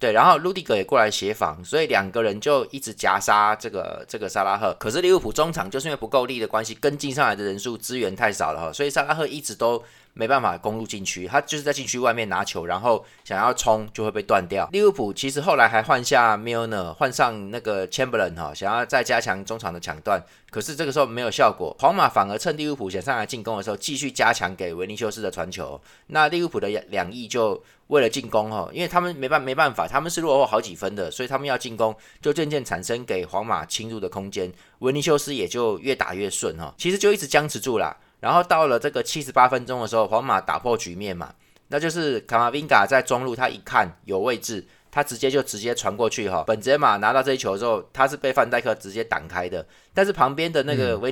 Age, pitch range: 20-39, 110-145 Hz